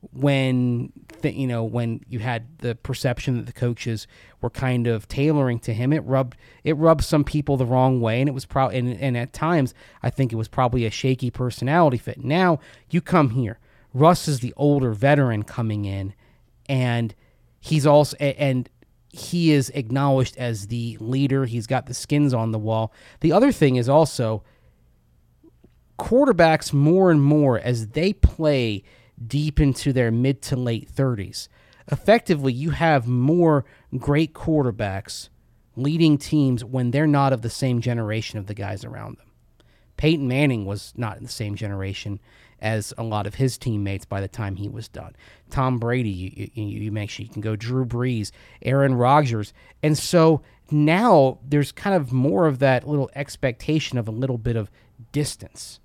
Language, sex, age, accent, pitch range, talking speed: English, male, 30-49, American, 115-145 Hz, 175 wpm